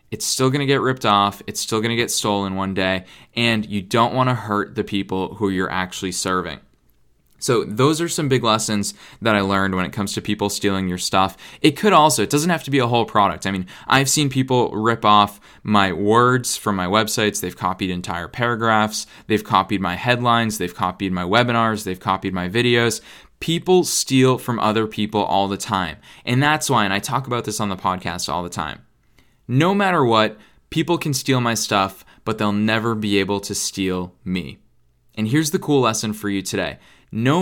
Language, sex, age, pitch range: English, male, 20-39, 95-120 Hz